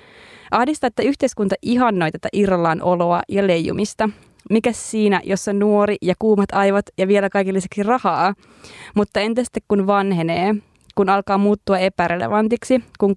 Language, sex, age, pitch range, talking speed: Finnish, female, 20-39, 185-215 Hz, 135 wpm